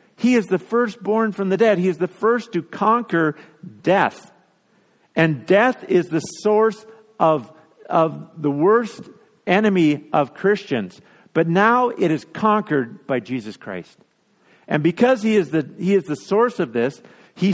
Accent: American